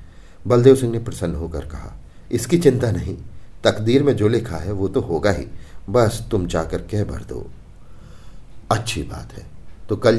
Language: Hindi